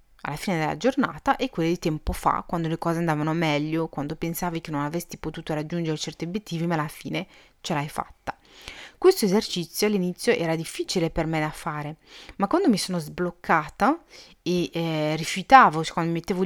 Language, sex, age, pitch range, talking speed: Italian, female, 30-49, 165-215 Hz, 180 wpm